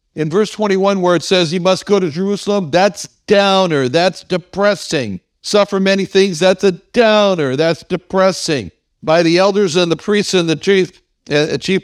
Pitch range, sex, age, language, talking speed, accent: 145-195 Hz, male, 60-79, English, 165 wpm, American